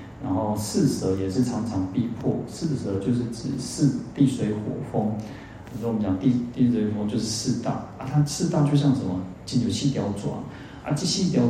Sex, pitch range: male, 105-130 Hz